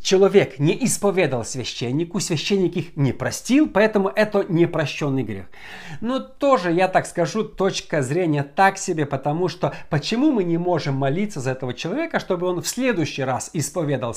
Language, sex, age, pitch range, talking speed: Russian, male, 50-69, 125-185 Hz, 155 wpm